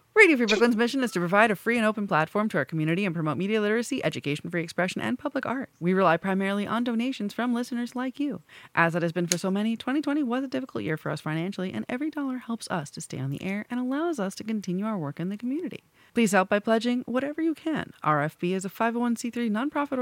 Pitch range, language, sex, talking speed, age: 170-245 Hz, English, female, 240 wpm, 30-49